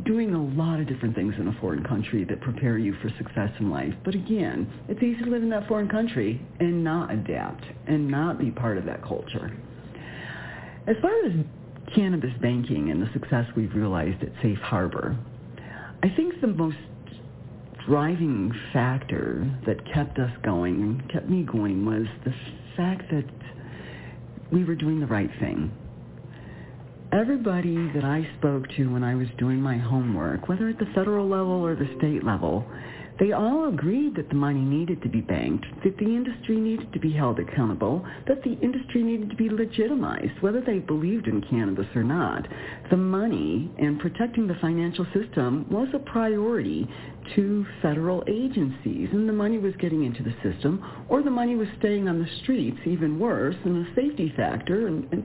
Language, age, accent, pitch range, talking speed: English, 50-69, American, 125-205 Hz, 175 wpm